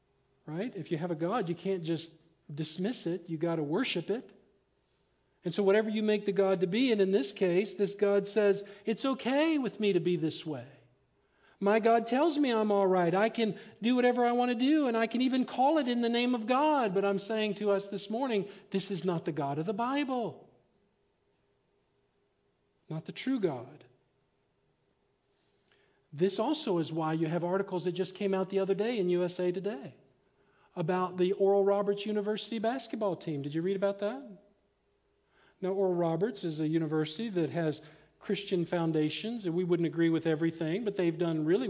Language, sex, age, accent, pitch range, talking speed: English, male, 50-69, American, 175-215 Hz, 195 wpm